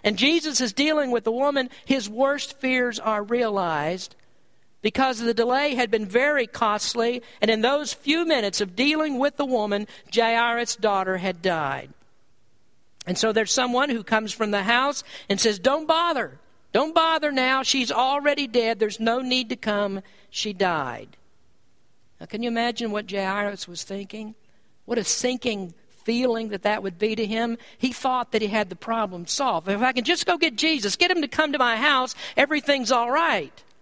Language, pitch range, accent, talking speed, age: English, 215-275 Hz, American, 180 wpm, 50-69